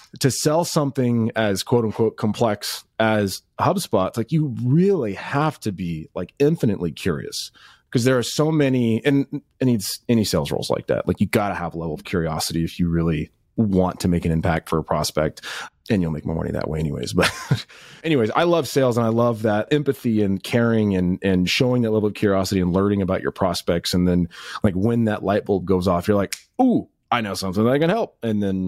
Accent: American